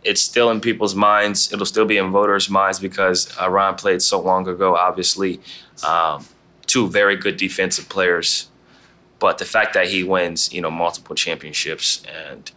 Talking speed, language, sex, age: 165 wpm, English, male, 20-39